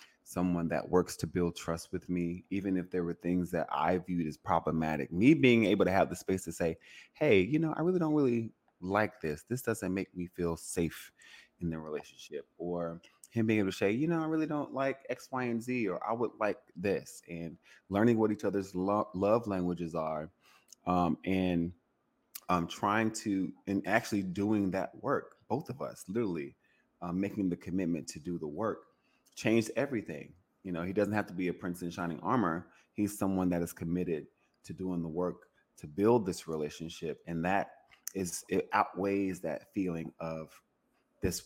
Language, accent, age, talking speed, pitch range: English, American, 30-49, 190 wpm, 85-100 Hz